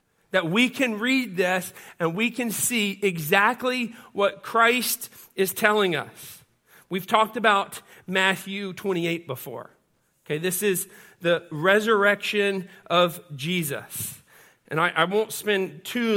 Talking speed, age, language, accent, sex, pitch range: 125 wpm, 40-59, English, American, male, 180-225 Hz